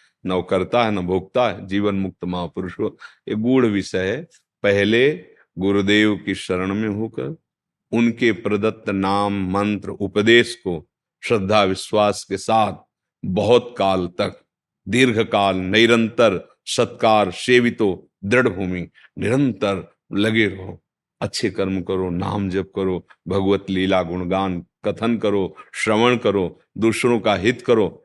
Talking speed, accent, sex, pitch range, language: 125 wpm, native, male, 95-110 Hz, Hindi